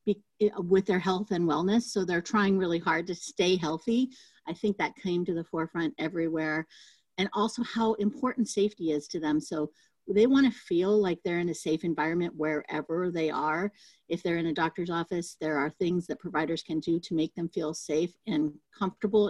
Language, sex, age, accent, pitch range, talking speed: English, female, 50-69, American, 165-210 Hz, 195 wpm